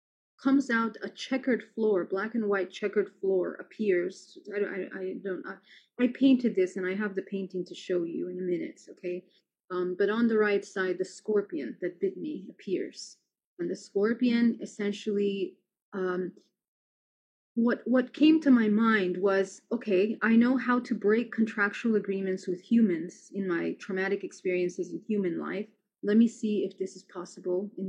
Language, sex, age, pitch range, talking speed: English, female, 30-49, 190-230 Hz, 170 wpm